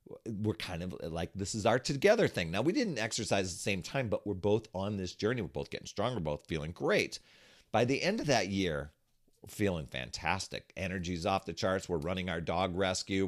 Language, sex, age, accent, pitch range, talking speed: English, male, 40-59, American, 85-105 Hz, 215 wpm